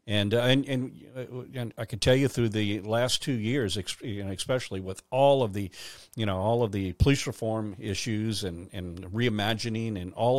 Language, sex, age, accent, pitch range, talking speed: English, male, 50-69, American, 100-125 Hz, 185 wpm